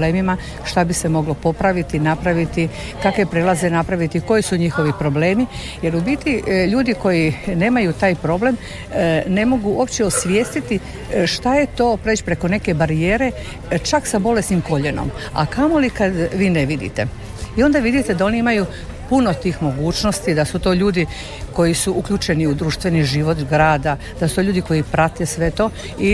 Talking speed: 165 wpm